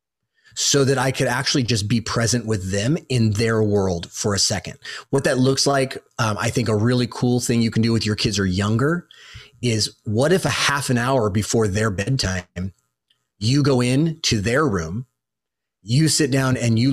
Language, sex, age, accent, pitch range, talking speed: English, male, 30-49, American, 110-140 Hz, 200 wpm